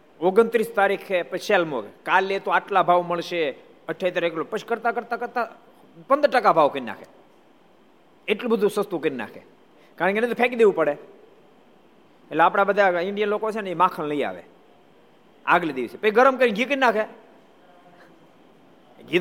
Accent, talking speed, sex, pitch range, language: native, 75 wpm, male, 160-215 Hz, Gujarati